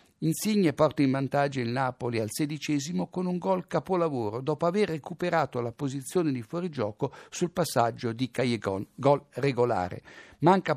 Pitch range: 115-155 Hz